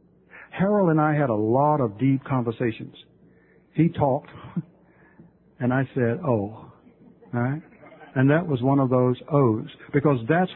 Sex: male